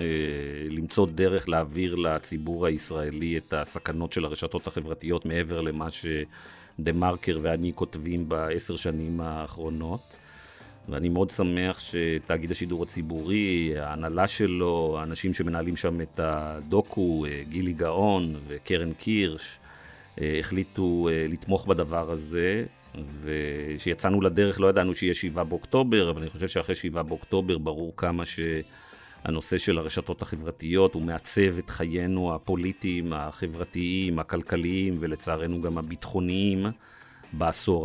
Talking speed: 115 wpm